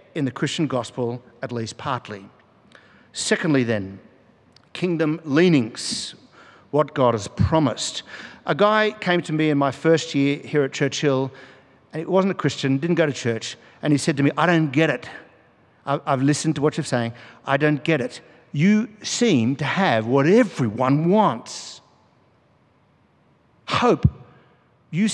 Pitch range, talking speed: 125-165 Hz, 155 wpm